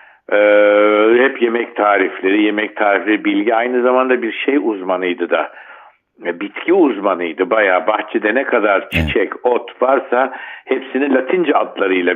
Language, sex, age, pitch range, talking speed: Turkish, male, 60-79, 95-135 Hz, 120 wpm